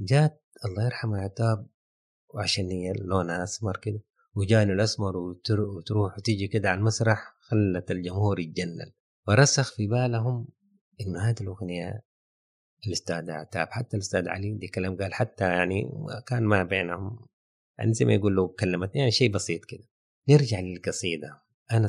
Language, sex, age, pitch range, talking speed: Arabic, male, 30-49, 90-110 Hz, 145 wpm